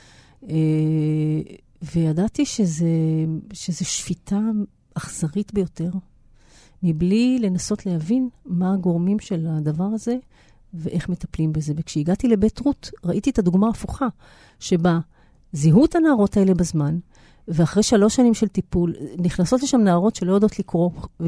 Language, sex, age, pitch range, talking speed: Hebrew, female, 40-59, 165-205 Hz, 115 wpm